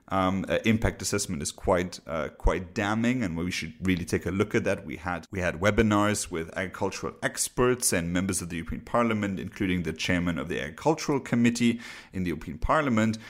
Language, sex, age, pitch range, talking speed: English, male, 40-59, 90-115 Hz, 195 wpm